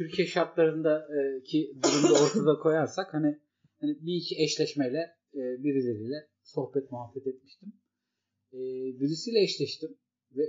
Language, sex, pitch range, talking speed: Turkish, male, 120-160 Hz, 95 wpm